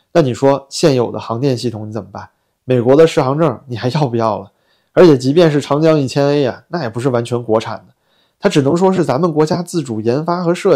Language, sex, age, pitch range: Chinese, male, 20-39, 115-145 Hz